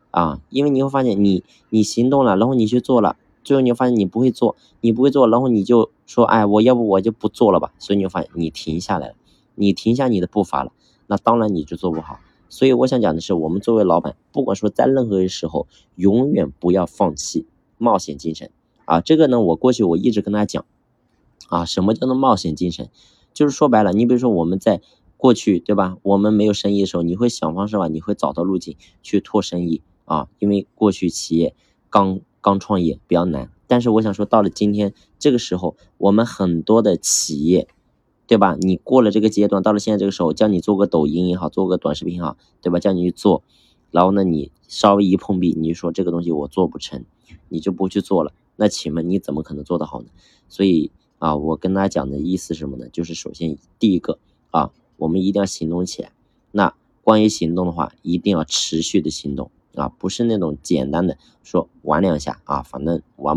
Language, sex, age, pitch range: Chinese, male, 20-39, 85-110 Hz